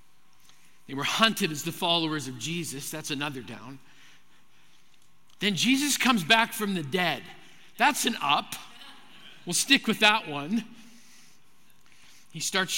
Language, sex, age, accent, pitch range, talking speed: English, male, 50-69, American, 170-210 Hz, 130 wpm